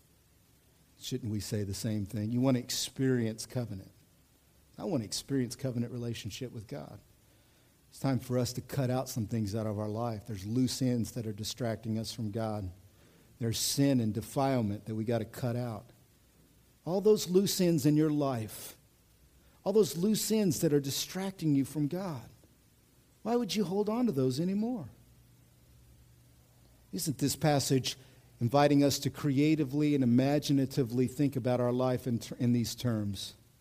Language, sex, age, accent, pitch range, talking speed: English, male, 50-69, American, 120-175 Hz, 170 wpm